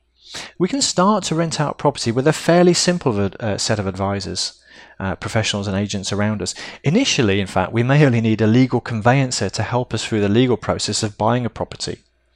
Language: English